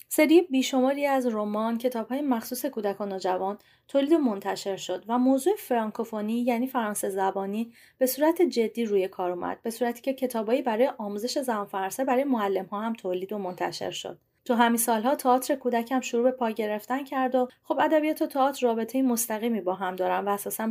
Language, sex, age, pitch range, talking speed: Persian, female, 30-49, 200-255 Hz, 180 wpm